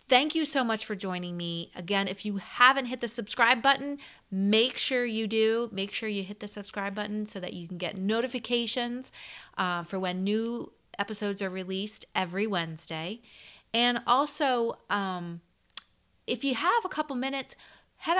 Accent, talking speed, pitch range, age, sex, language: American, 170 wpm, 180-240 Hz, 30-49, female, English